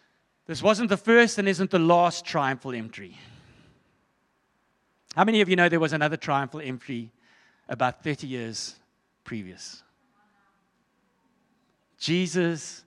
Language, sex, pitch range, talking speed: English, male, 135-180 Hz, 115 wpm